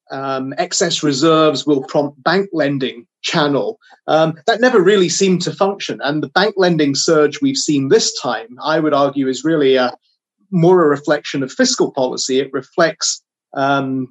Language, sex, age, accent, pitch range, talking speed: English, male, 30-49, British, 135-180 Hz, 160 wpm